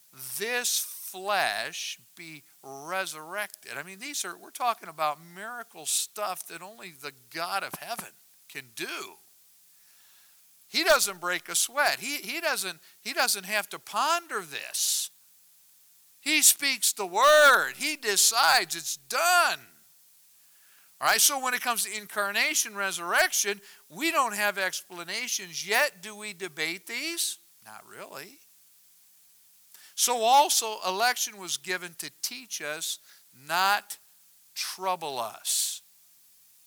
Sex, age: male, 60-79